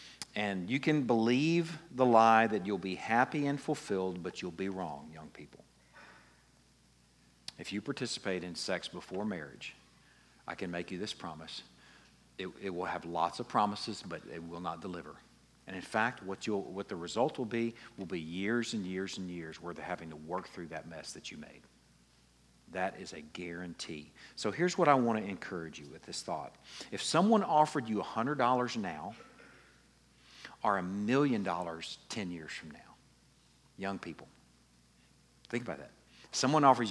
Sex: male